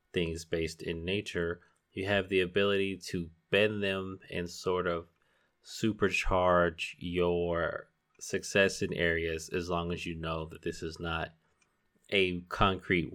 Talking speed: 135 wpm